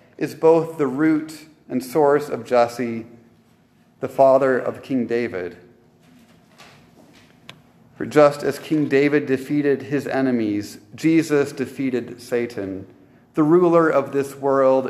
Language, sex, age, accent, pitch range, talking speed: English, male, 40-59, American, 120-150 Hz, 115 wpm